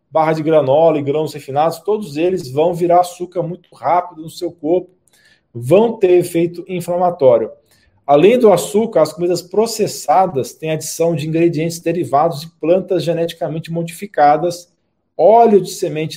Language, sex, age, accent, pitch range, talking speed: Portuguese, male, 40-59, Brazilian, 150-180 Hz, 140 wpm